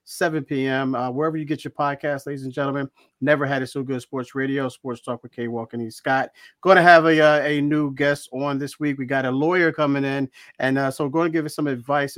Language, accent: English, American